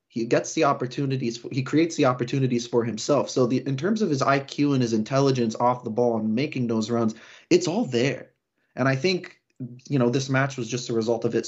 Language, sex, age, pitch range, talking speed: English, male, 20-39, 115-130 Hz, 230 wpm